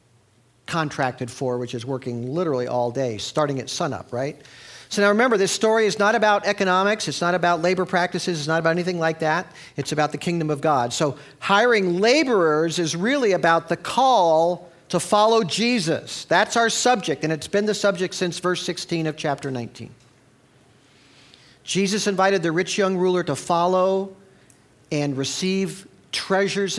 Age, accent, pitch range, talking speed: 50-69, American, 135-190 Hz, 165 wpm